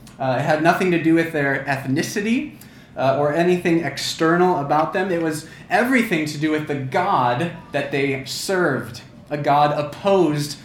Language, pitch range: English, 140-185 Hz